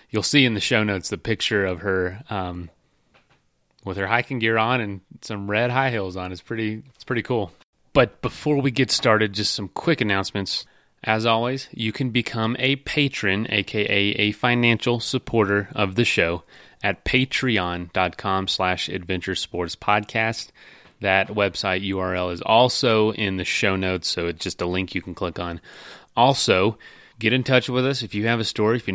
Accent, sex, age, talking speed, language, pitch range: American, male, 30-49, 180 wpm, English, 95-115 Hz